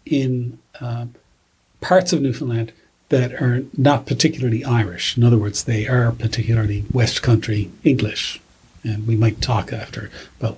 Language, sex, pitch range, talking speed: English, male, 115-150 Hz, 140 wpm